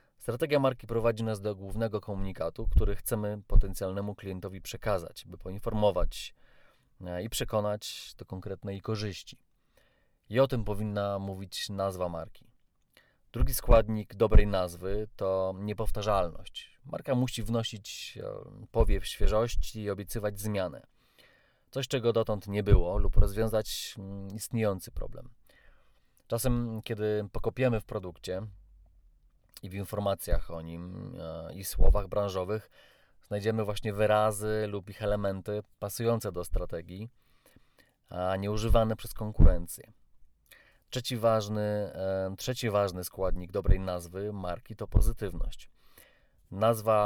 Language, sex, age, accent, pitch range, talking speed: Polish, male, 30-49, native, 95-110 Hz, 110 wpm